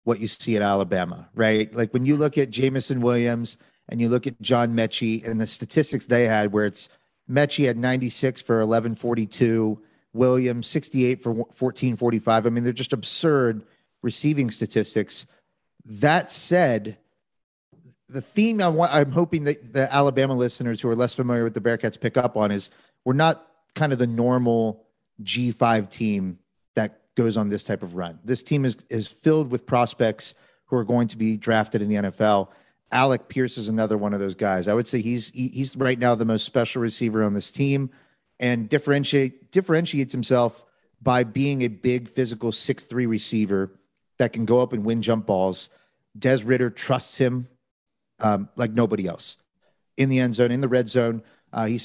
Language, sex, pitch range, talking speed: English, male, 110-130 Hz, 180 wpm